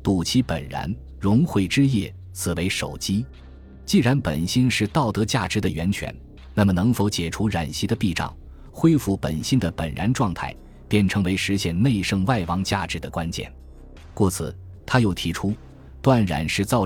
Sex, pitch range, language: male, 80-110 Hz, Chinese